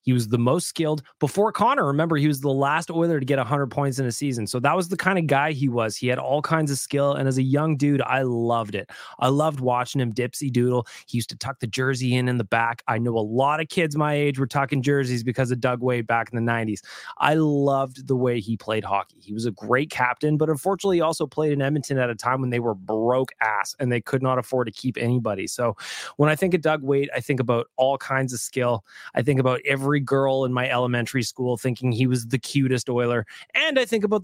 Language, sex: English, male